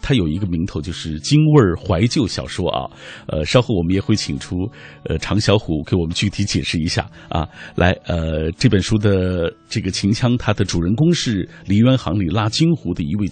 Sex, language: male, Chinese